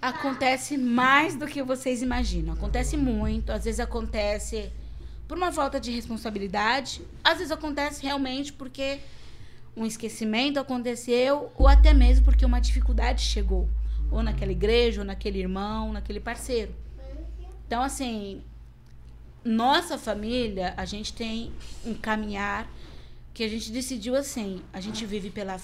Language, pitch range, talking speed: Portuguese, 195-255 Hz, 135 wpm